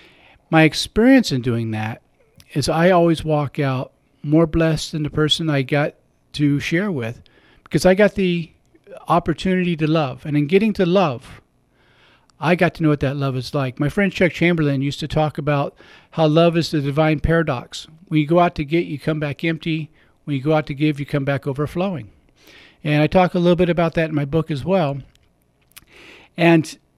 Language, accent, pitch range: English, American, 150-185 Hz